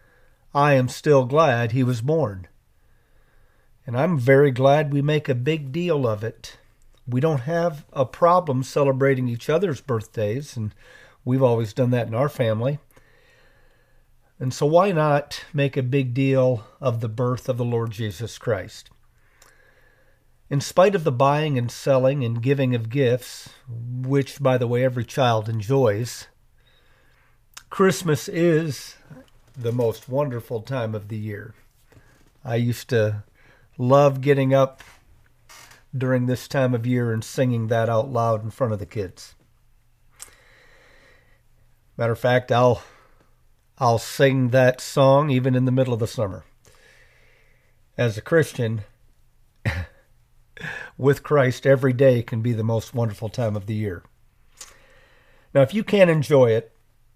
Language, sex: English, male